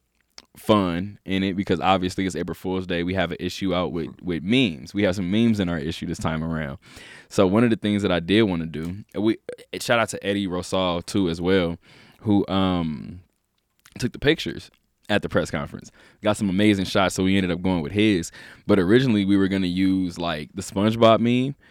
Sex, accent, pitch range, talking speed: male, American, 95-115 Hz, 215 wpm